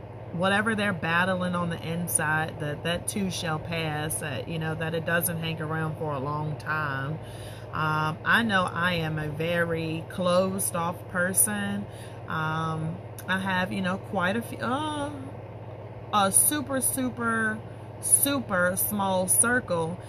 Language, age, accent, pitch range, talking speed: English, 30-49, American, 135-180 Hz, 145 wpm